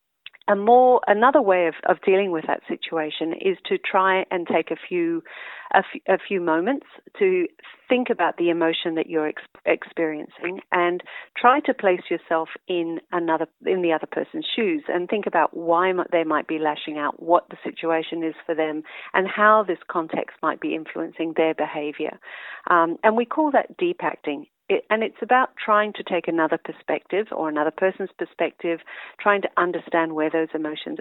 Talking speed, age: 180 wpm, 40-59